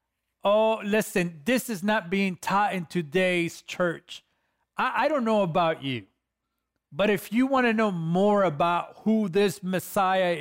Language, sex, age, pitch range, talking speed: English, male, 40-59, 160-190 Hz, 155 wpm